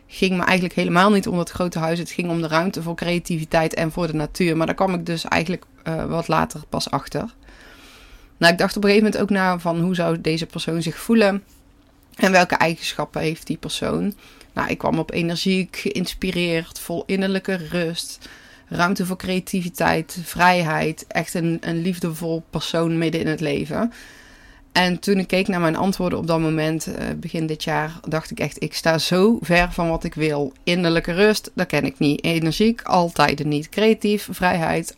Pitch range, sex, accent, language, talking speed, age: 160-190 Hz, female, Dutch, Dutch, 190 wpm, 20-39